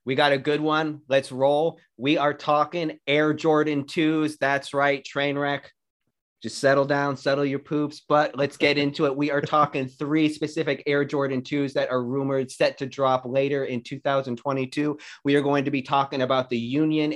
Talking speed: 190 wpm